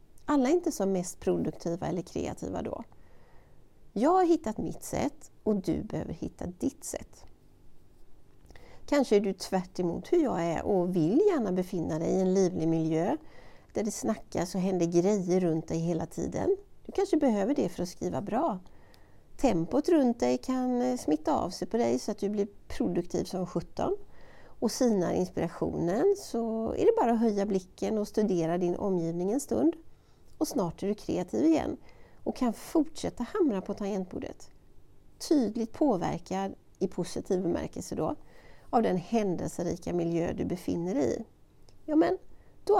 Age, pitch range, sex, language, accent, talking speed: 60-79, 175-275 Hz, female, Swedish, native, 165 wpm